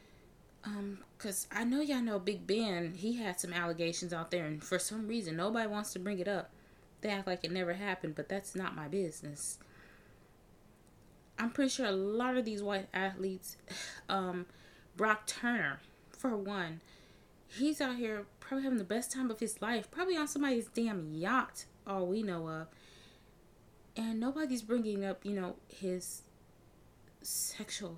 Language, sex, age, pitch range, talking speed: English, female, 20-39, 175-220 Hz, 165 wpm